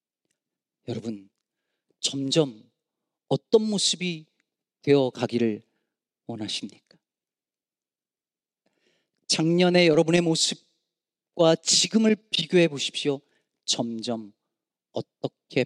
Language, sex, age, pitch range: Korean, male, 40-59, 145-200 Hz